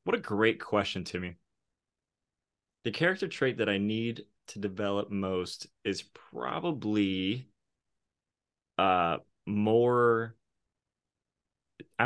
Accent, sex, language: American, male, English